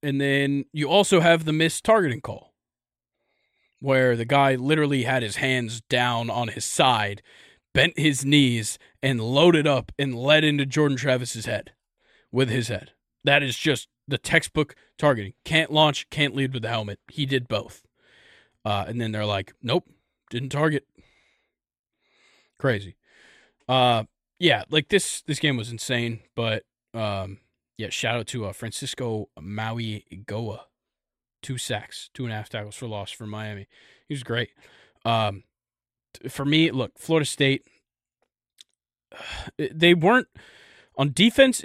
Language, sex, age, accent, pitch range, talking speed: English, male, 20-39, American, 115-155 Hz, 145 wpm